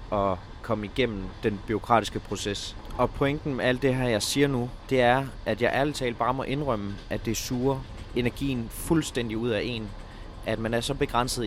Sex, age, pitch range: male, 30-49, 110-135 Hz